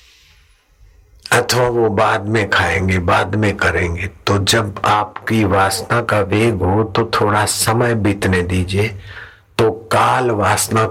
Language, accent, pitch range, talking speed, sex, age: Hindi, native, 90-115 Hz, 125 wpm, male, 60-79